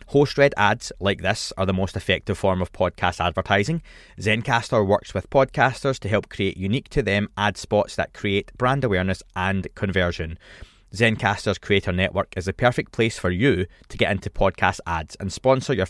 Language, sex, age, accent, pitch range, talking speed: English, male, 20-39, British, 95-120 Hz, 175 wpm